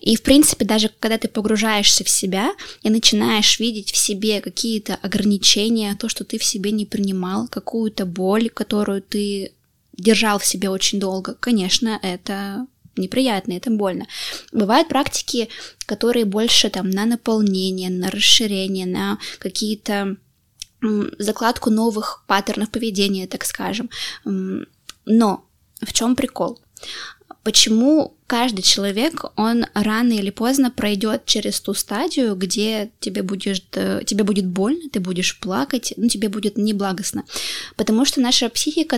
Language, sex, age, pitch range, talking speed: Russian, female, 20-39, 200-235 Hz, 130 wpm